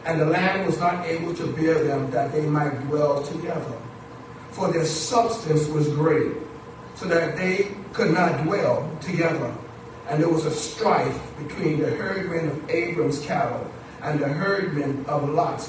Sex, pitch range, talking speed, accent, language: male, 150-175 Hz, 160 wpm, American, English